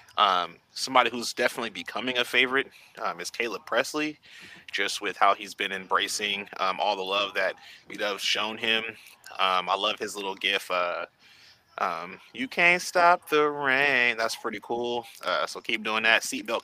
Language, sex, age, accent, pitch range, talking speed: English, male, 20-39, American, 105-125 Hz, 175 wpm